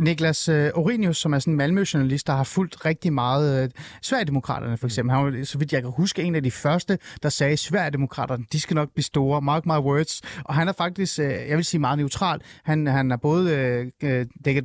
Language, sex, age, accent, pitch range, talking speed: Danish, male, 30-49, native, 135-165 Hz, 225 wpm